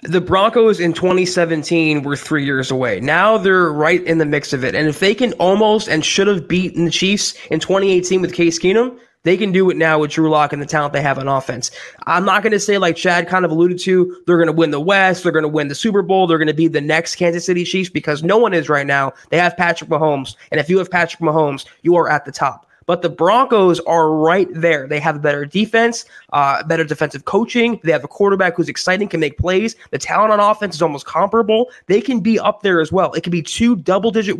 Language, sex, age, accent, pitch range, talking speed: English, male, 20-39, American, 155-200 Hz, 250 wpm